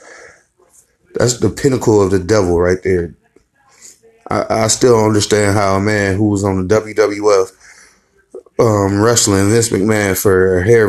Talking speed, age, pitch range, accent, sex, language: 150 wpm, 30-49, 95-115 Hz, American, male, English